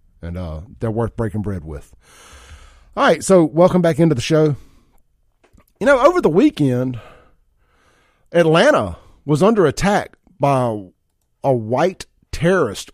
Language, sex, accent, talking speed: English, male, American, 130 wpm